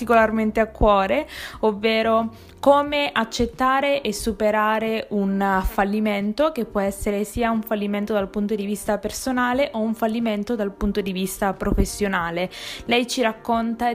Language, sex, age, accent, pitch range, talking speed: Italian, female, 20-39, native, 205-255 Hz, 135 wpm